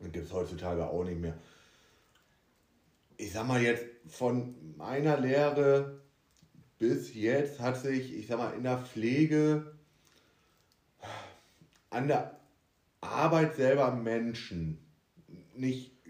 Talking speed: 110 wpm